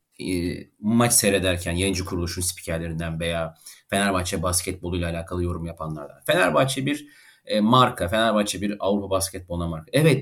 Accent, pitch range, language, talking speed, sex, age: native, 95-140 Hz, Turkish, 125 wpm, male, 40-59